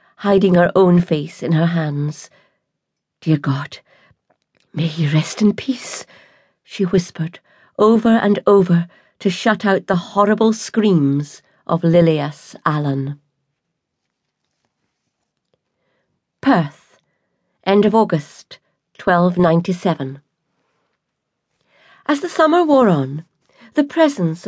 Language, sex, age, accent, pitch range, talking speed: English, female, 50-69, British, 160-200 Hz, 100 wpm